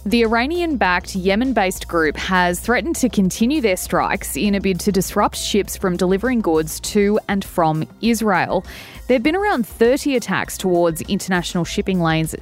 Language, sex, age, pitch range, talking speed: English, female, 20-39, 175-230 Hz, 160 wpm